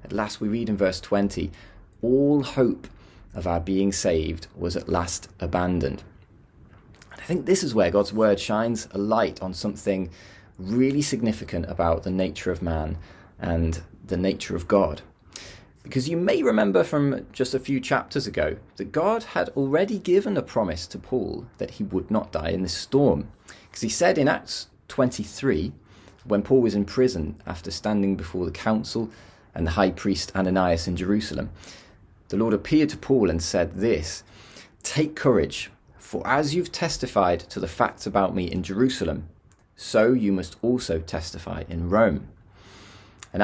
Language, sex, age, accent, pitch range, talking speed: English, male, 30-49, British, 90-120 Hz, 165 wpm